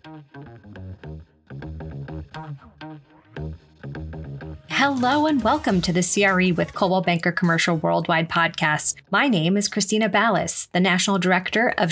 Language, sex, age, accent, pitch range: English, female, 20-39, American, 165-200 Hz